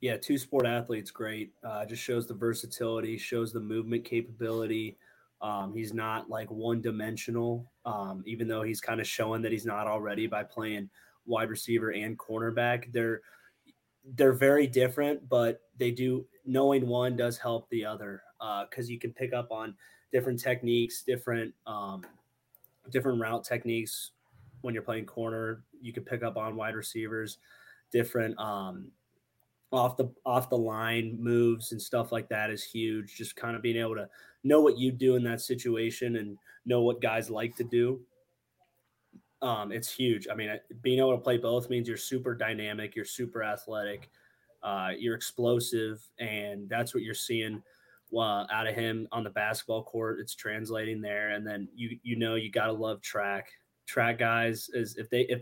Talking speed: 175 wpm